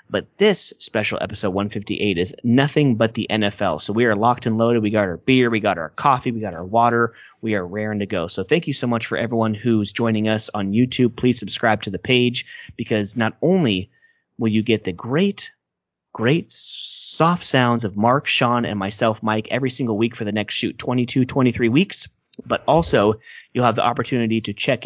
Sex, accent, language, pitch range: male, American, English, 105-130 Hz